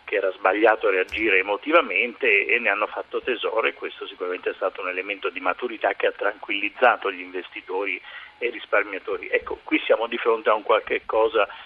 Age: 40-59